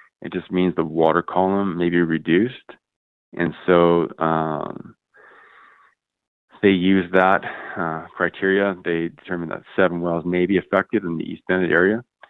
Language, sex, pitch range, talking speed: English, male, 85-90 Hz, 145 wpm